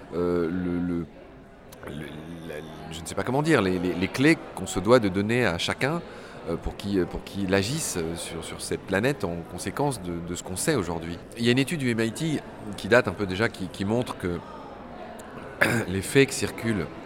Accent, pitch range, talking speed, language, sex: French, 85-120 Hz, 205 wpm, French, male